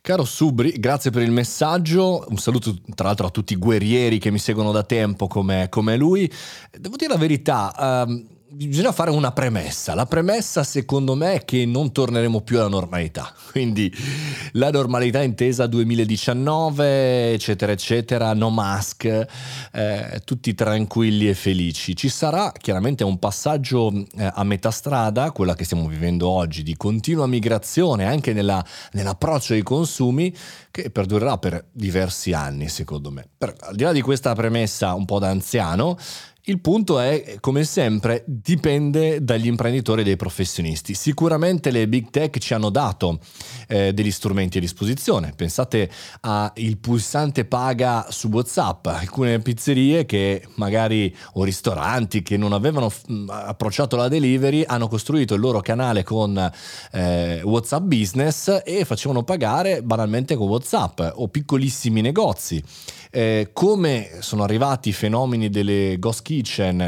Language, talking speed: Italian, 145 wpm